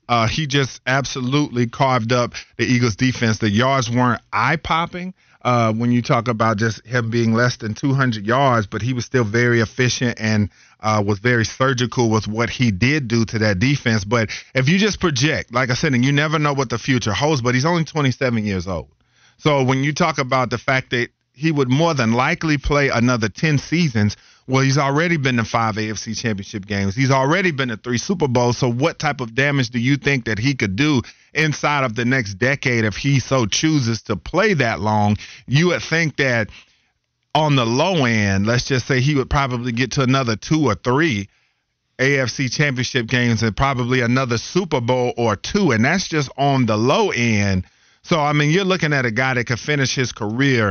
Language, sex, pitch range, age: English, male, 115-140 Hz, 40-59